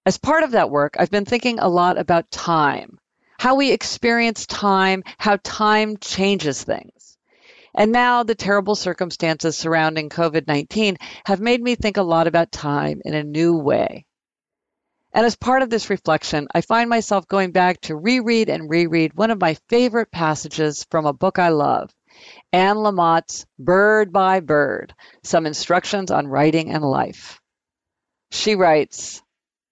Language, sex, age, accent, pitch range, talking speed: English, female, 50-69, American, 160-220 Hz, 155 wpm